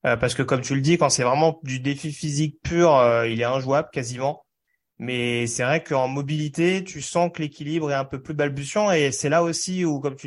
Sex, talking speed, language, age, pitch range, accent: male, 230 wpm, French, 30-49, 125-155 Hz, French